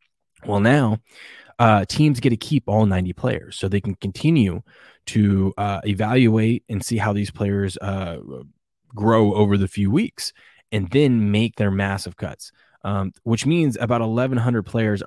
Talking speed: 160 wpm